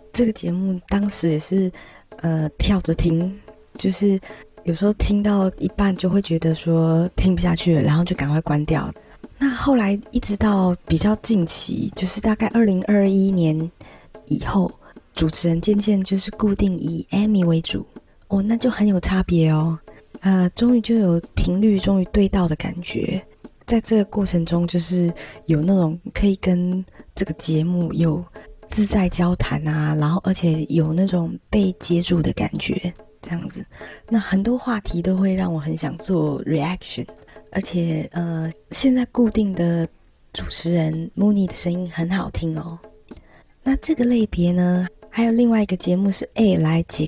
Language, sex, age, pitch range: Chinese, female, 20-39, 170-210 Hz